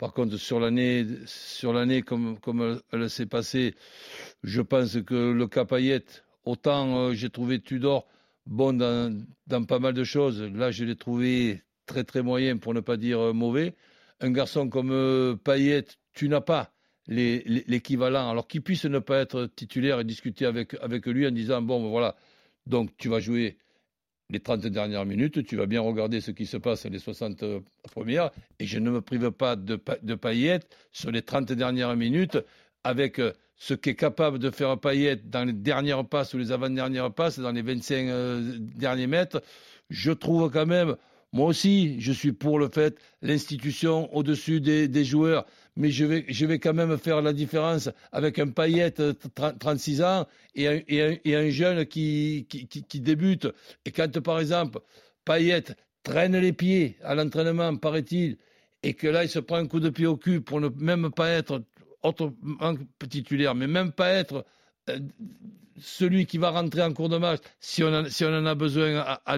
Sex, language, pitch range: male, French, 120-155 Hz